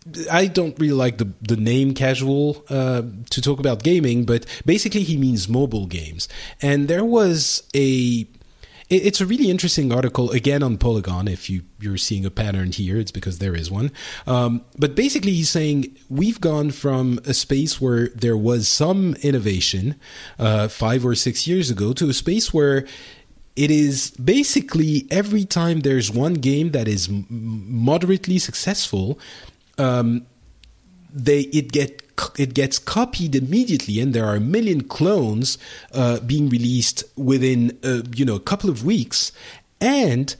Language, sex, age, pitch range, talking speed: English, male, 30-49, 120-160 Hz, 160 wpm